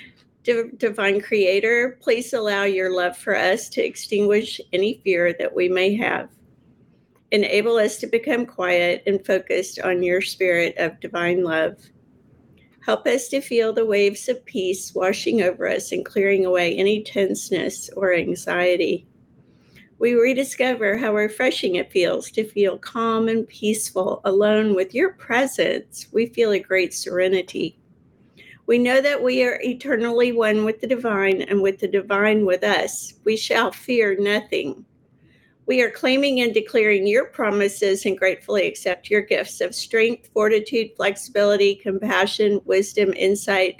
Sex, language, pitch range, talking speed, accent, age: female, English, 190-230 Hz, 145 wpm, American, 50-69